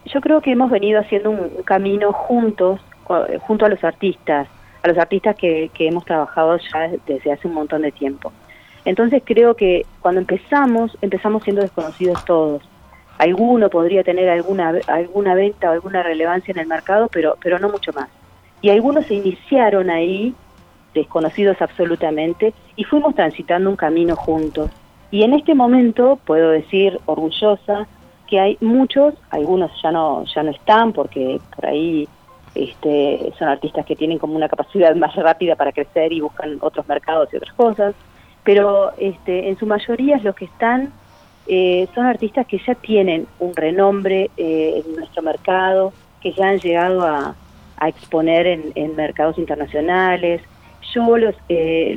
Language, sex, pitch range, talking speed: Spanish, female, 160-205 Hz, 160 wpm